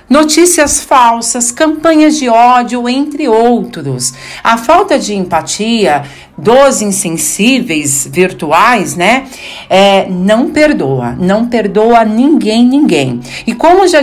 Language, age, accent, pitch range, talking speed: Portuguese, 50-69, Brazilian, 180-240 Hz, 105 wpm